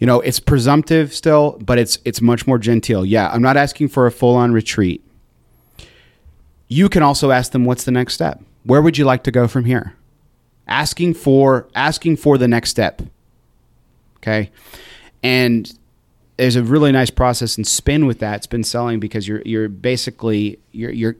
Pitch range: 110-135 Hz